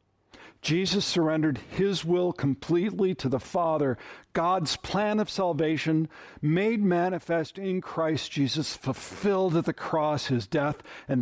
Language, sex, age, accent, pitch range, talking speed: English, male, 50-69, American, 125-160 Hz, 130 wpm